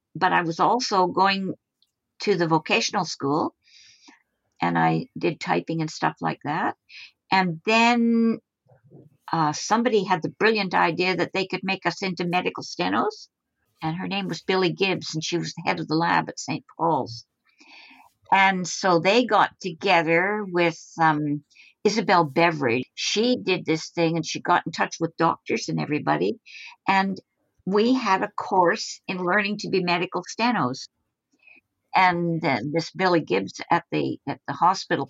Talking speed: 160 wpm